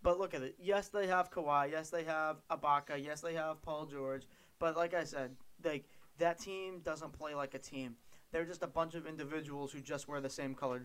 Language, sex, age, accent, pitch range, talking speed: English, male, 20-39, American, 135-165 Hz, 225 wpm